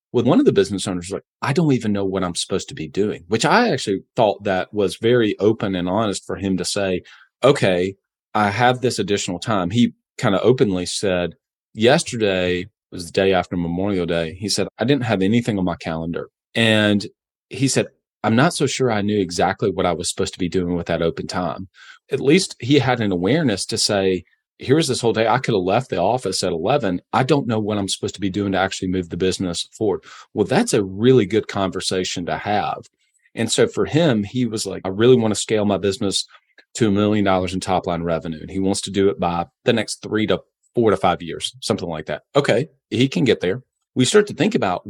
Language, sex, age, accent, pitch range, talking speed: English, male, 30-49, American, 95-120 Hz, 230 wpm